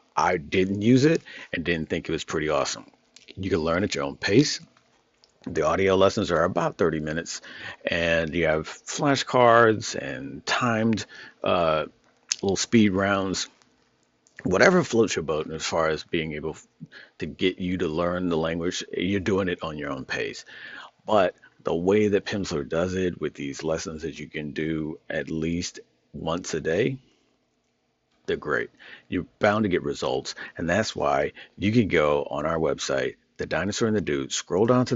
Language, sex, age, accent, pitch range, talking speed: English, male, 50-69, American, 80-110 Hz, 175 wpm